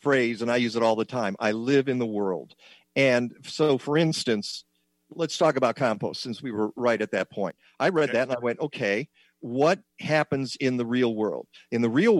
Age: 50-69